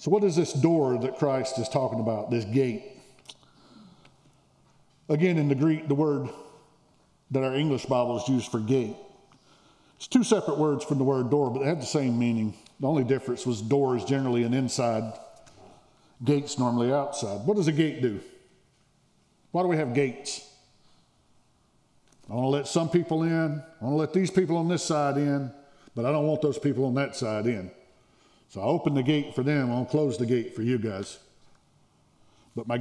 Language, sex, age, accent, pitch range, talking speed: English, male, 50-69, American, 120-155 Hz, 190 wpm